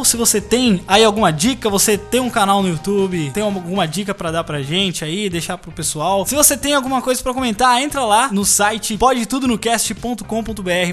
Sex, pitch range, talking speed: male, 180-255 Hz, 190 wpm